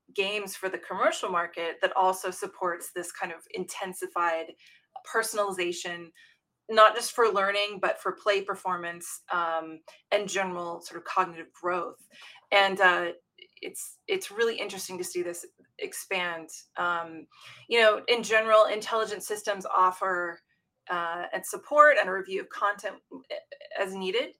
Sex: female